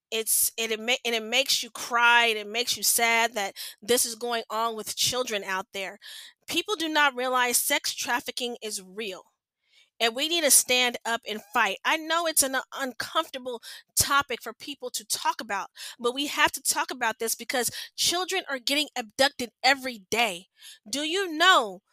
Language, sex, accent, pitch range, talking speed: English, female, American, 230-305 Hz, 180 wpm